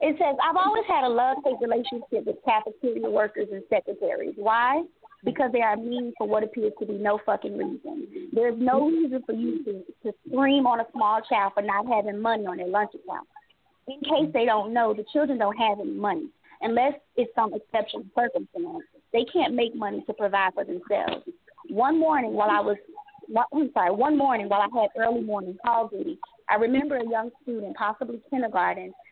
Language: English